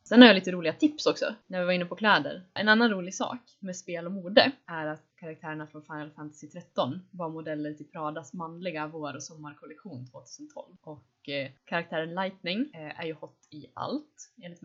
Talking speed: 195 wpm